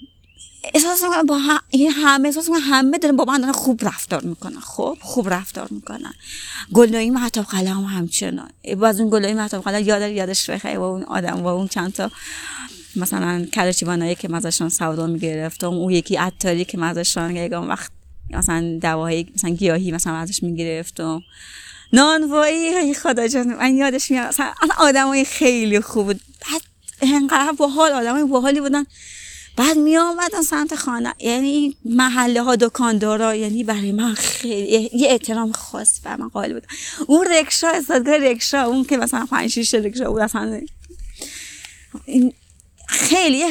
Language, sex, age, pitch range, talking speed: Persian, female, 30-49, 195-280 Hz, 145 wpm